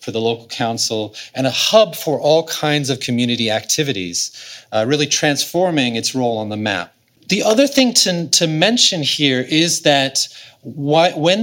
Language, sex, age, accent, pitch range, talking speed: English, male, 30-49, American, 120-170 Hz, 165 wpm